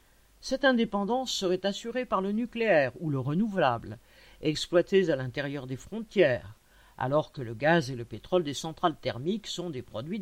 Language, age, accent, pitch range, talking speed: French, 50-69, French, 145-190 Hz, 165 wpm